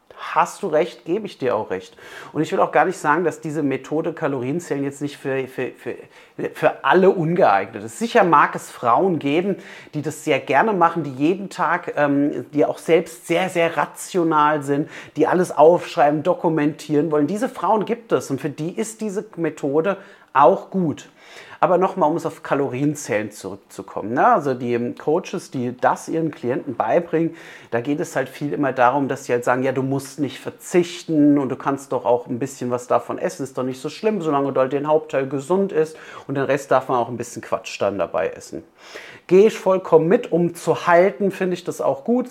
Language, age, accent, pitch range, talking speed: German, 30-49, German, 135-170 Hz, 205 wpm